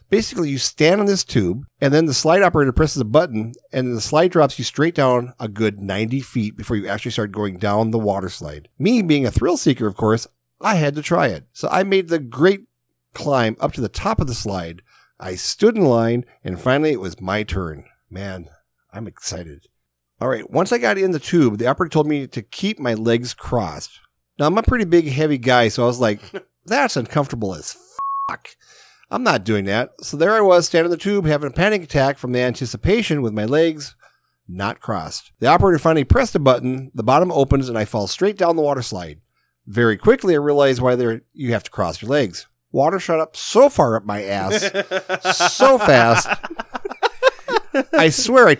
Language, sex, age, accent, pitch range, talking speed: English, male, 40-59, American, 115-180 Hz, 210 wpm